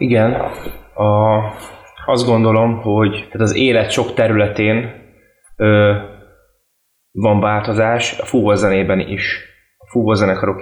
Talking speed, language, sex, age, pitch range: 100 wpm, Hungarian, male, 20-39, 100-110 Hz